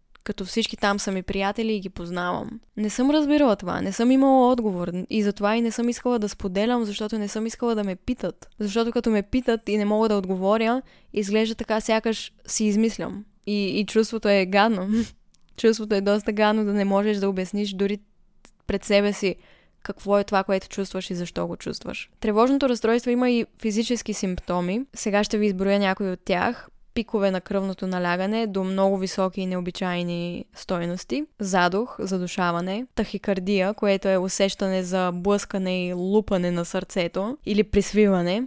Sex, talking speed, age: female, 170 wpm, 10-29